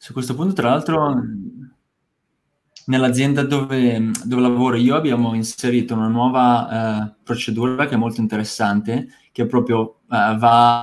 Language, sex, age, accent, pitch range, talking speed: Italian, male, 20-39, native, 110-130 Hz, 135 wpm